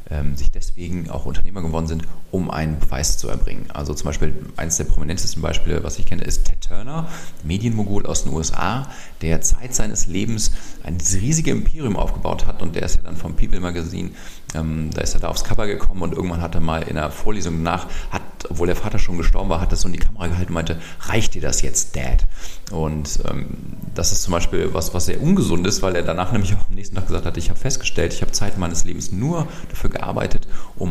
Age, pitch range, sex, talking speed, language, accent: 40-59, 80-95 Hz, male, 230 wpm, English, German